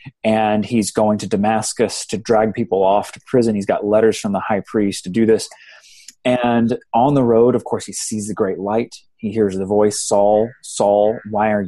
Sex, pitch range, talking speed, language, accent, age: male, 105-130 Hz, 205 wpm, English, American, 30-49